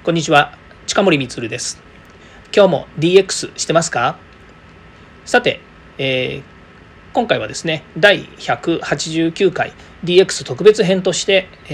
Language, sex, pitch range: Japanese, male, 130-185 Hz